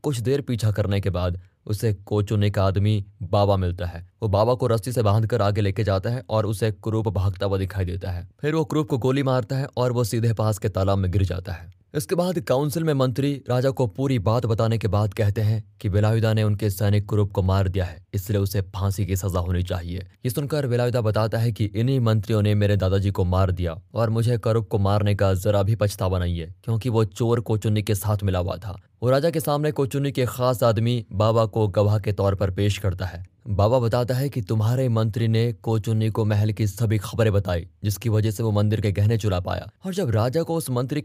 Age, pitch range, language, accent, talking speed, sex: 20-39, 100-120 Hz, Hindi, native, 230 wpm, male